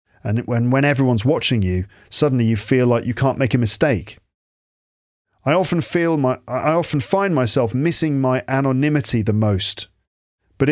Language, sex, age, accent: English, male, 40-59, British